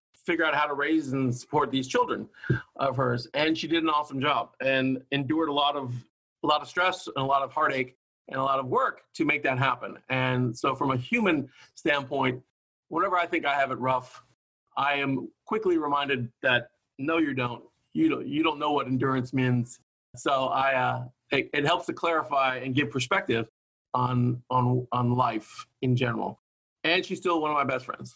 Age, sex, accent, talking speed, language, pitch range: 40-59, male, American, 200 wpm, English, 130-180 Hz